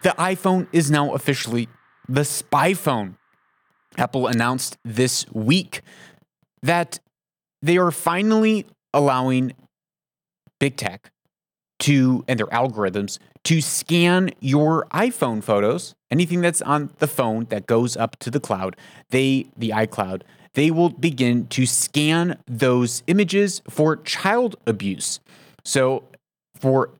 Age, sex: 30-49, male